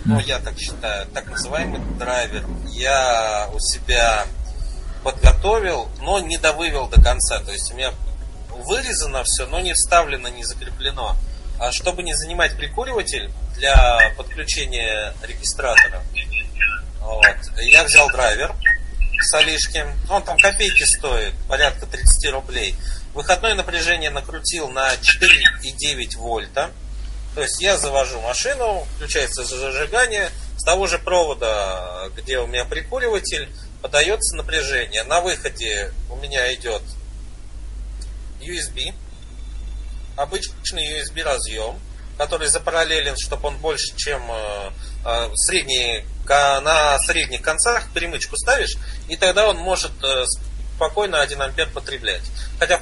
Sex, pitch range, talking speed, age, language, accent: male, 115-180 Hz, 115 wpm, 30-49, Russian, native